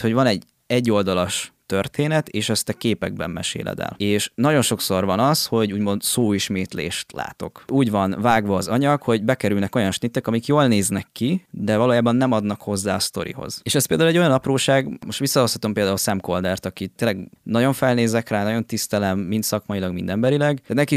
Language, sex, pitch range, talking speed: Hungarian, male, 100-125 Hz, 185 wpm